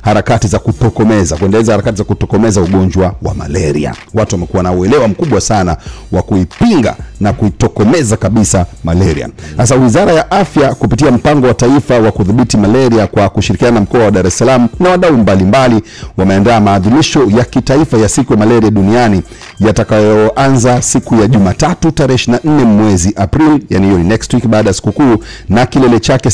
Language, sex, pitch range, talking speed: English, male, 95-120 Hz, 155 wpm